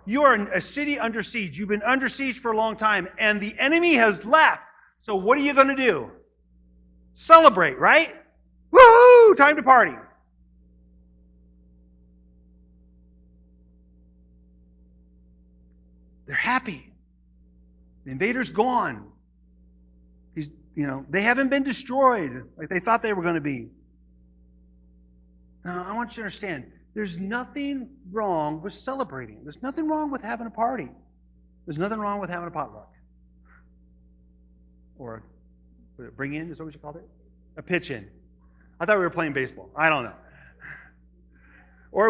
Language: English